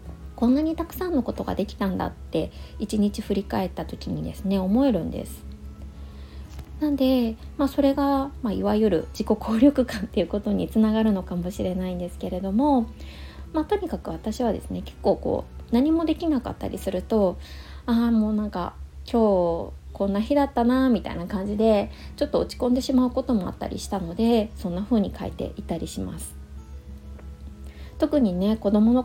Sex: female